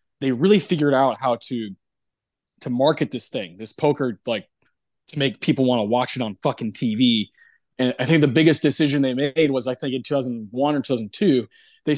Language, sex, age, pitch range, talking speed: English, male, 20-39, 130-175 Hz, 215 wpm